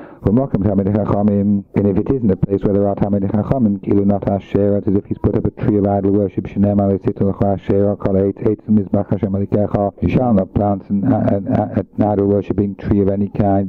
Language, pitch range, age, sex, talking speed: English, 95-110 Hz, 50-69, male, 270 wpm